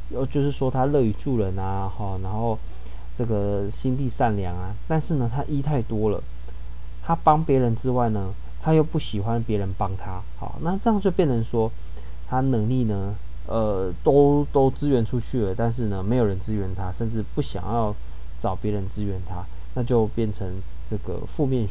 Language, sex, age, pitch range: Chinese, male, 20-39, 85-120 Hz